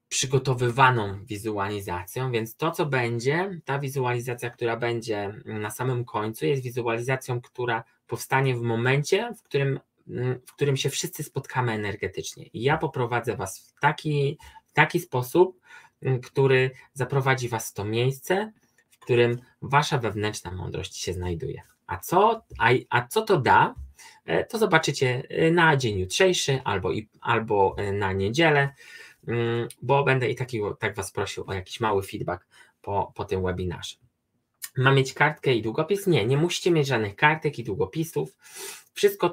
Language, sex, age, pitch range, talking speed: Polish, male, 20-39, 115-150 Hz, 145 wpm